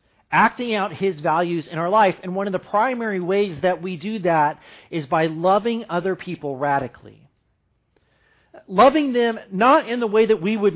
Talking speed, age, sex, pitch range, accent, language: 180 wpm, 40-59, male, 150-210 Hz, American, English